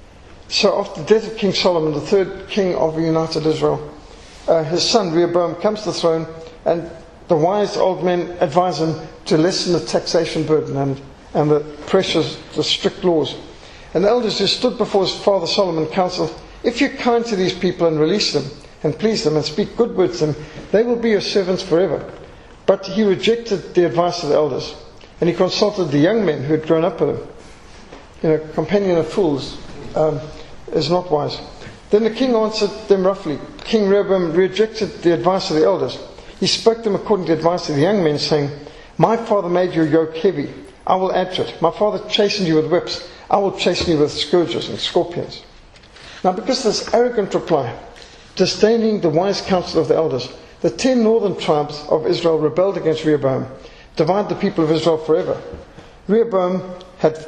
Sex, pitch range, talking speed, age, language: male, 155-200 Hz, 190 wpm, 50-69, English